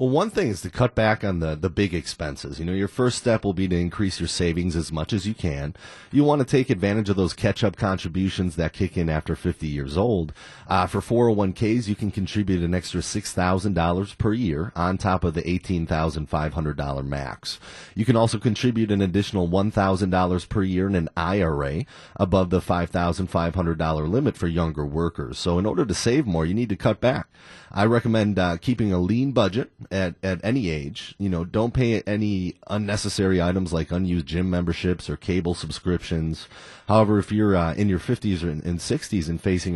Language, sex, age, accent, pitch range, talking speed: English, male, 30-49, American, 85-105 Hz, 200 wpm